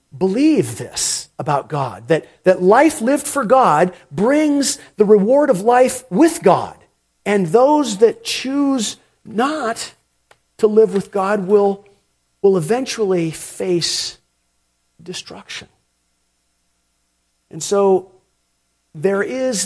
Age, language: 50-69, English